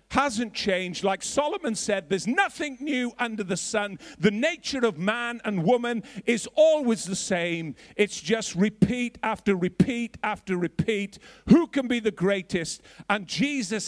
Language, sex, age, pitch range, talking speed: English, male, 50-69, 180-225 Hz, 150 wpm